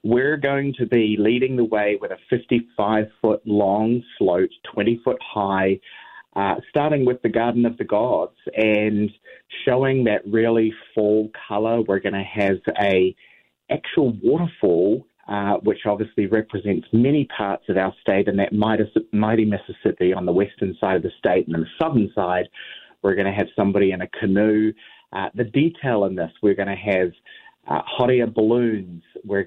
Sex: male